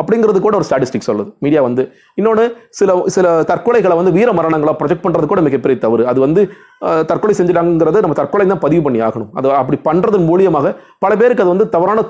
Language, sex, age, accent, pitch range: Tamil, male, 30-49, native, 130-190 Hz